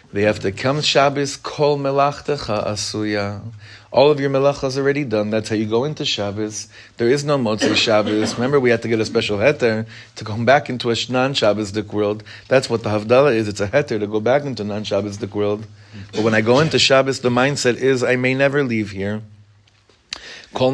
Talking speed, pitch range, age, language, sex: 210 wpm, 105-135 Hz, 30-49, English, male